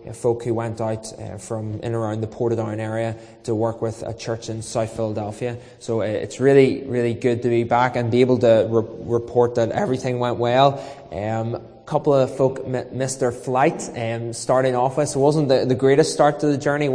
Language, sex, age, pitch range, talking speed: English, male, 20-39, 110-125 Hz, 220 wpm